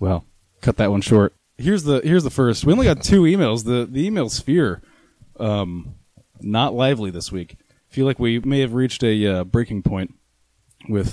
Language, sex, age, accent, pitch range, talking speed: English, male, 20-39, American, 95-130 Hz, 190 wpm